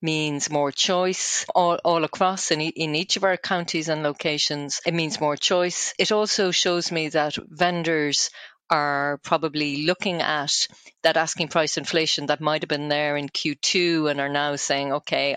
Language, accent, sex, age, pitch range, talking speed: English, Irish, female, 40-59, 145-170 Hz, 170 wpm